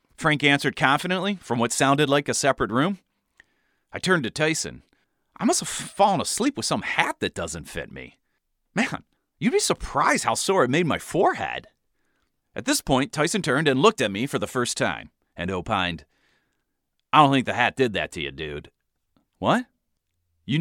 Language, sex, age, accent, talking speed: English, male, 40-59, American, 185 wpm